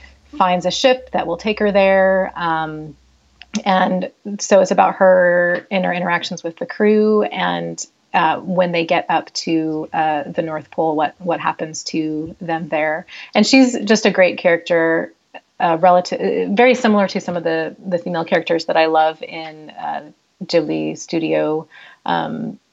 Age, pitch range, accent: 30-49, 160-200 Hz, American